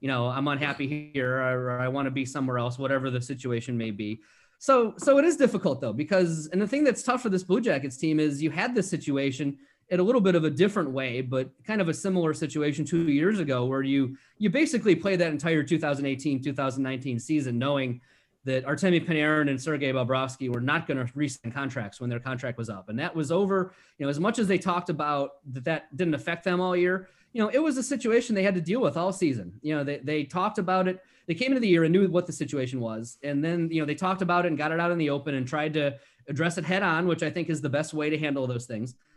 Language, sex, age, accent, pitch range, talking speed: English, male, 30-49, American, 135-185 Hz, 255 wpm